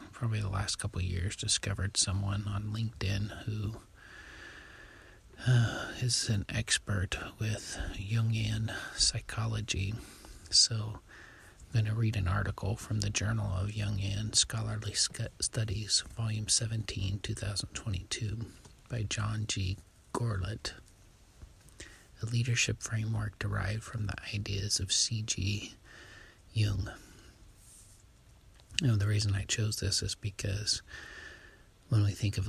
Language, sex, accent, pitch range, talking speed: English, male, American, 100-110 Hz, 115 wpm